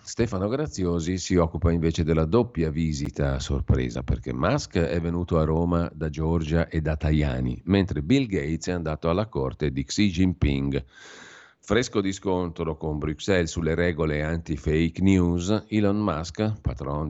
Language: Italian